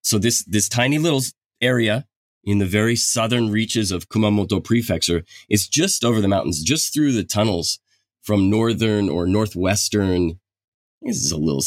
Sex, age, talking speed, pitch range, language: male, 30-49, 160 wpm, 90-110 Hz, English